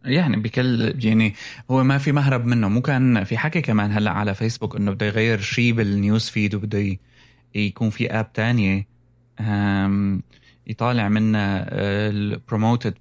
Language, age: Arabic, 20-39